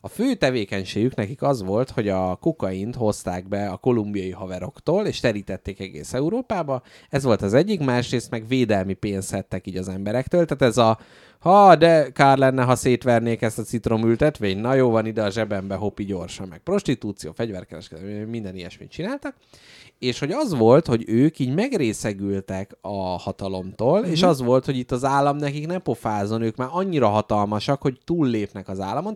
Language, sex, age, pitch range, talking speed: Hungarian, male, 30-49, 100-135 Hz, 175 wpm